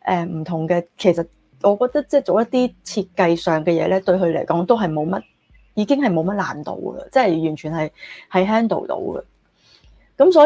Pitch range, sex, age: 180-245 Hz, female, 20-39